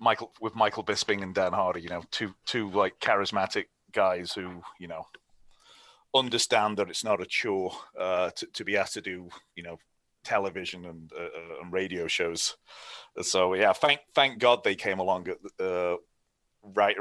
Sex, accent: male, British